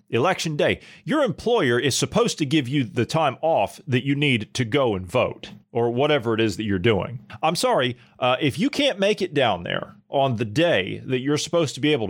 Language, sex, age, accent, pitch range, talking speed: English, male, 40-59, American, 105-145 Hz, 225 wpm